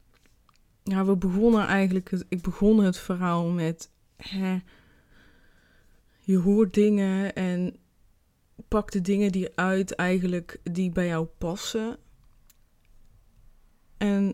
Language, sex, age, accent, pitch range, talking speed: Dutch, female, 20-39, Dutch, 180-200 Hz, 90 wpm